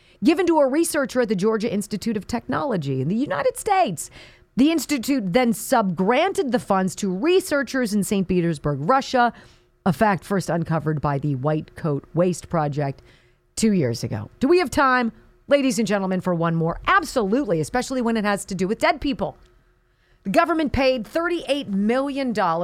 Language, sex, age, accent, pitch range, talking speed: English, female, 40-59, American, 180-275 Hz, 170 wpm